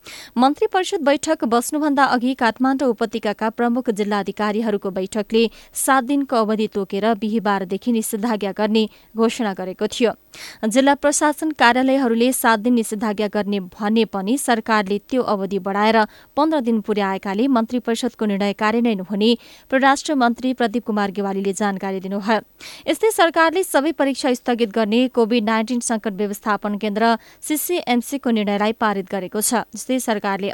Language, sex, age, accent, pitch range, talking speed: English, female, 20-39, Indian, 210-265 Hz, 100 wpm